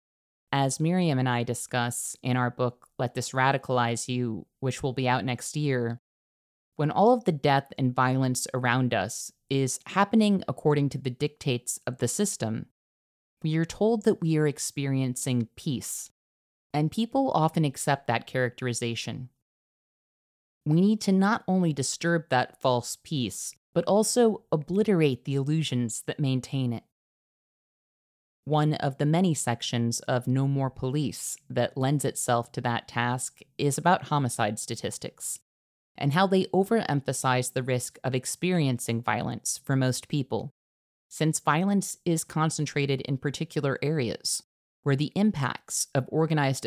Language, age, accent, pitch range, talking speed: English, 30-49, American, 125-160 Hz, 140 wpm